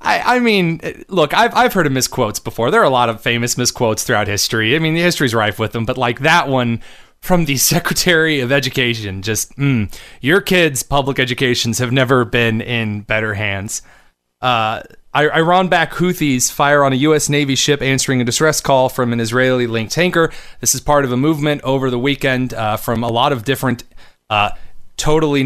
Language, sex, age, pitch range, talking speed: English, male, 30-49, 115-145 Hz, 190 wpm